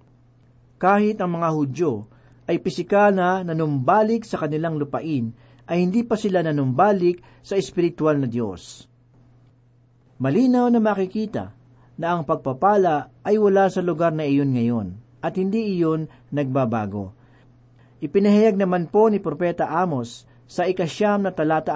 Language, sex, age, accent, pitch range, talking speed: Filipino, male, 50-69, native, 125-195 Hz, 130 wpm